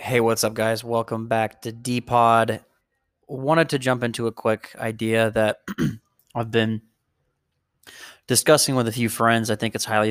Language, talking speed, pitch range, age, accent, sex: English, 160 wpm, 110-130 Hz, 20-39, American, male